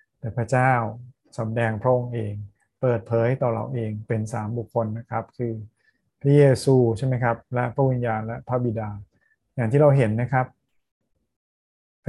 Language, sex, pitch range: Thai, male, 115-135 Hz